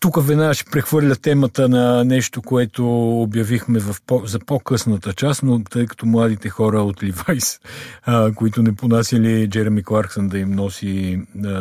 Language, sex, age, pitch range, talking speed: Bulgarian, male, 50-69, 100-125 Hz, 155 wpm